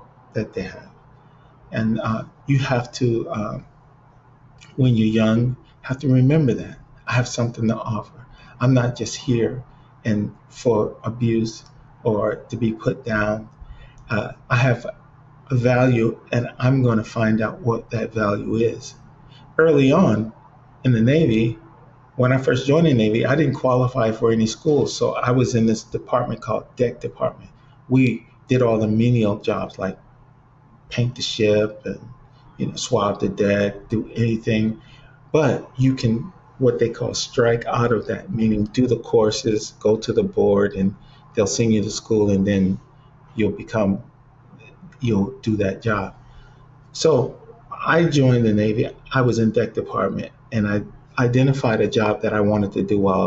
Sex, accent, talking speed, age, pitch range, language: male, American, 165 wpm, 40-59, 110-130 Hz, English